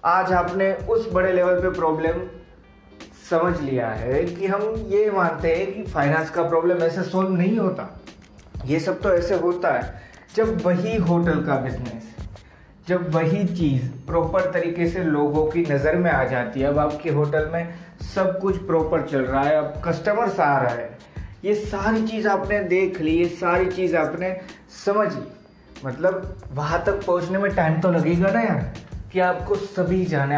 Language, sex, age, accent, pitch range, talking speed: Hindi, male, 20-39, native, 155-195 Hz, 170 wpm